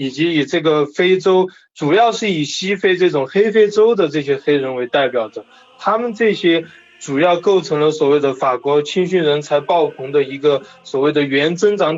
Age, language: 20-39, Chinese